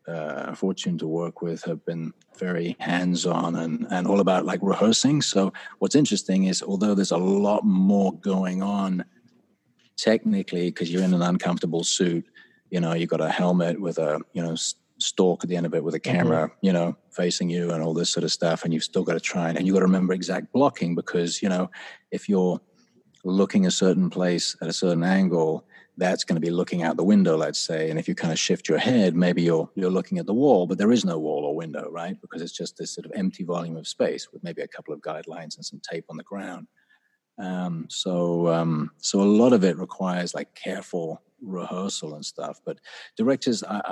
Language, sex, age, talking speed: English, male, 30-49, 220 wpm